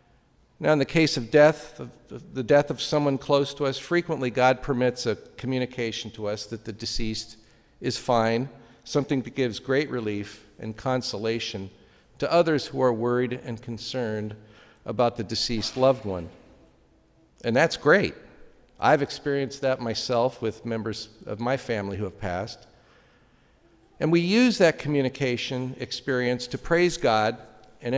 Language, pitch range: English, 110-140 Hz